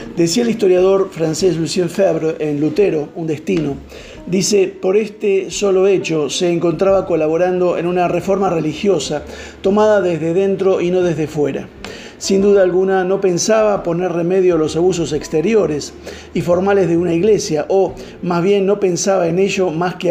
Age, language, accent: 50-69, Spanish, Argentinian